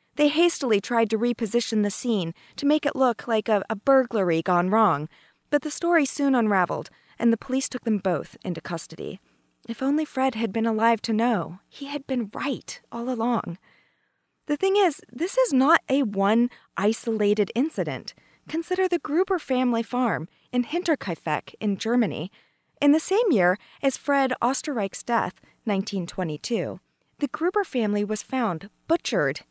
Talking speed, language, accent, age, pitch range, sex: 160 wpm, English, American, 40-59, 205-280 Hz, female